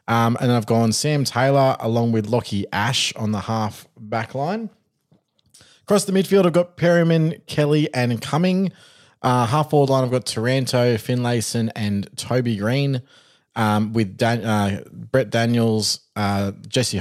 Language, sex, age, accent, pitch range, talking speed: English, male, 20-39, Australian, 105-125 Hz, 155 wpm